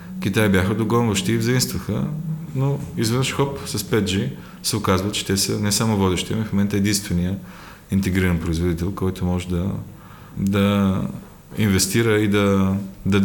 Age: 30-49